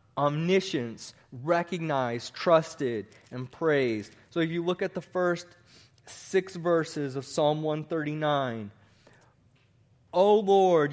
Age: 20-39